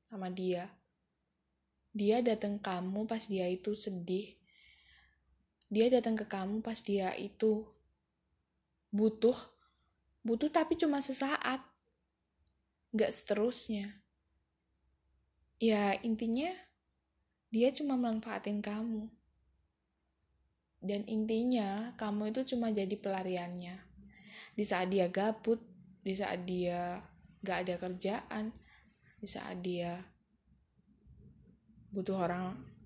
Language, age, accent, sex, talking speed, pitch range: Indonesian, 10-29, native, female, 90 wpm, 175-220 Hz